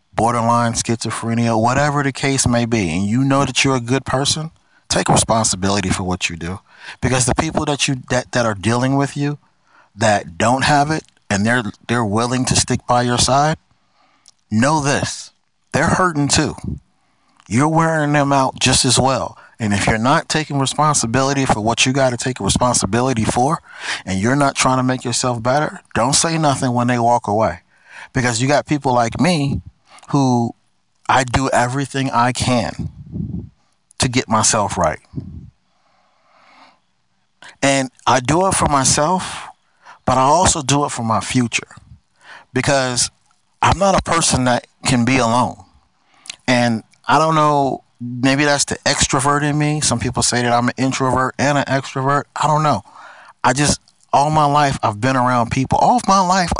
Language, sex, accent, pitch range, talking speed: English, male, American, 120-145 Hz, 170 wpm